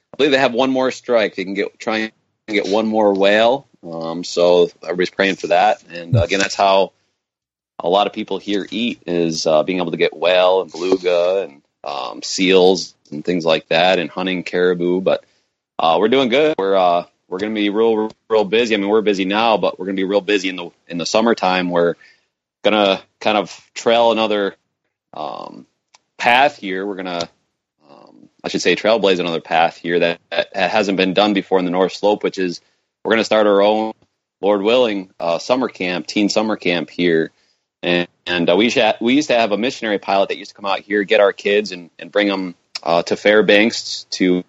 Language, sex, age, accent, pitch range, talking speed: English, male, 30-49, American, 90-105 Hz, 210 wpm